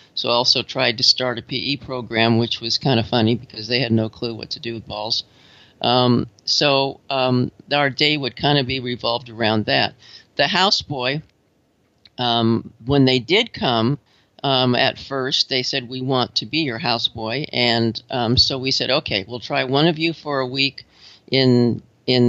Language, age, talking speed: English, 50-69, 185 wpm